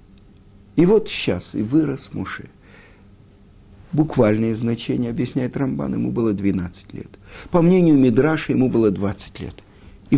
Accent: native